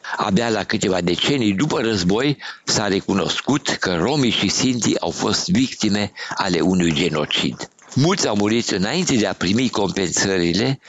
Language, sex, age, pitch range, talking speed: Romanian, male, 60-79, 90-120 Hz, 145 wpm